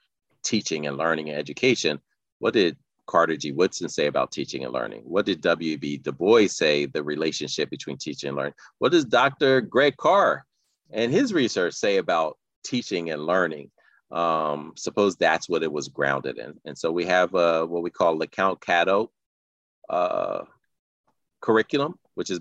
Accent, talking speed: American, 165 wpm